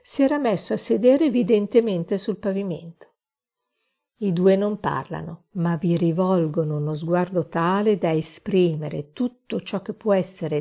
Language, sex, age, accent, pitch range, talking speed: Italian, female, 50-69, native, 165-220 Hz, 140 wpm